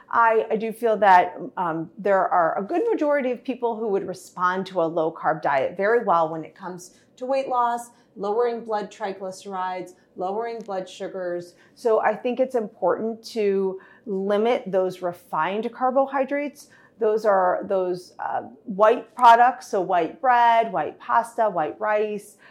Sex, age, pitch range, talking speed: female, 40-59, 190-235 Hz, 155 wpm